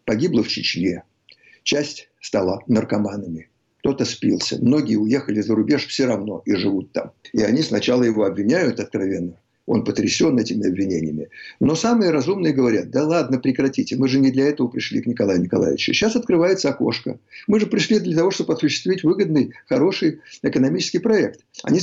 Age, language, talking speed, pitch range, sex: 60-79, Russian, 160 wpm, 125-190 Hz, male